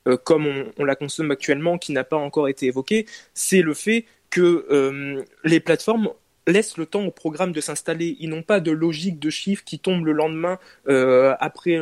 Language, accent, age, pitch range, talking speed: French, French, 20-39, 145-180 Hz, 205 wpm